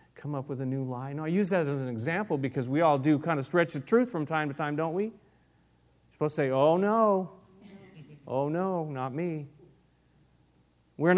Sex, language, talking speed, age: male, English, 210 wpm, 40-59